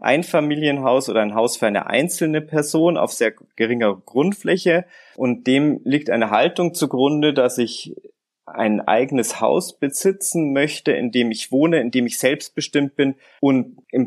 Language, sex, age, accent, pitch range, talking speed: German, male, 30-49, German, 120-150 Hz, 155 wpm